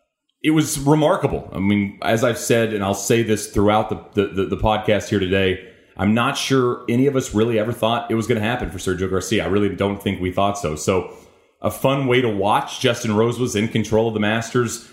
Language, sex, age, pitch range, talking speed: English, male, 30-49, 110-150 Hz, 230 wpm